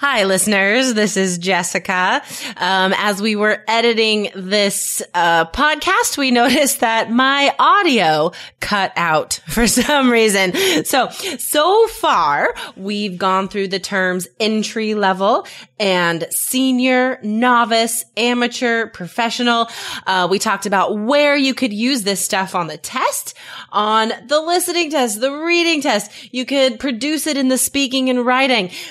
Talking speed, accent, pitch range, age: 140 wpm, American, 195-265 Hz, 20-39